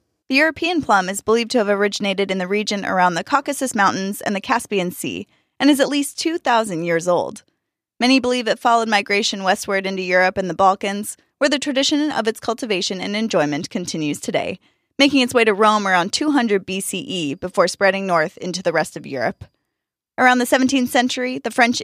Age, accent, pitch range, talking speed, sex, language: 20-39, American, 190-255 Hz, 190 wpm, female, English